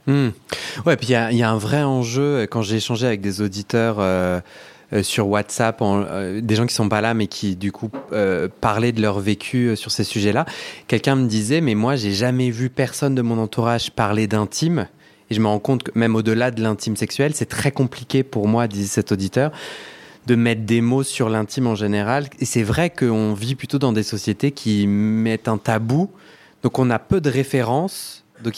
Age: 20-39